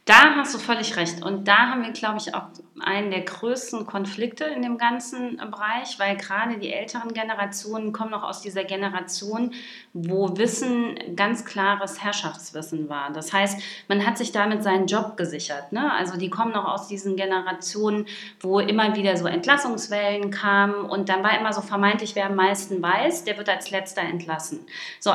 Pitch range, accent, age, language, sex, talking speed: 190-230 Hz, German, 30-49, German, female, 180 wpm